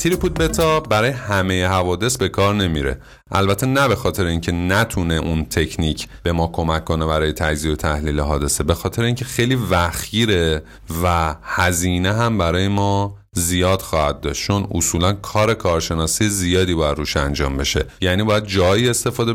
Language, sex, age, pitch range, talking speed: Persian, male, 30-49, 85-115 Hz, 160 wpm